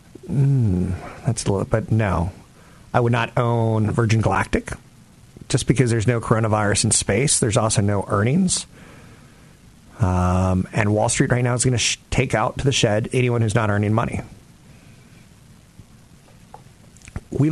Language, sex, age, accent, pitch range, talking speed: English, male, 40-59, American, 105-135 Hz, 145 wpm